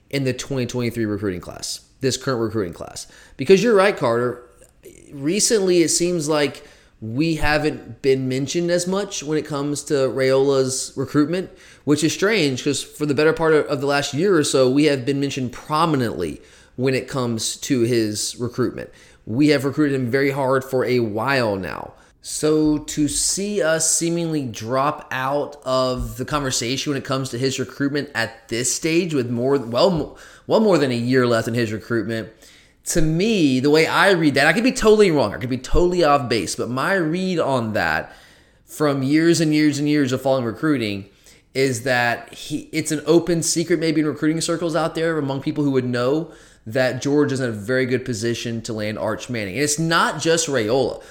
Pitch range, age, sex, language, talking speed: 125-155 Hz, 20-39, male, English, 190 wpm